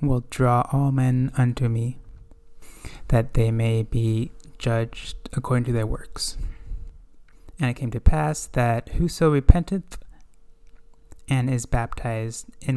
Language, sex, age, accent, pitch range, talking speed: English, male, 20-39, American, 115-135 Hz, 125 wpm